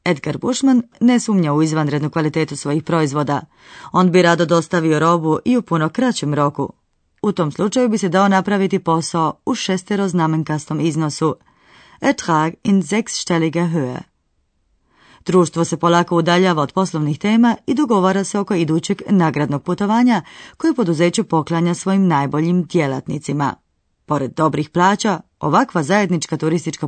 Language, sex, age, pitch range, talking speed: Croatian, female, 30-49, 155-200 Hz, 130 wpm